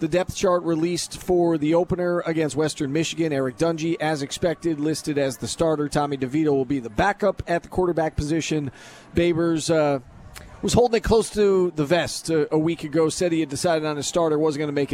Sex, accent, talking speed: male, American, 210 wpm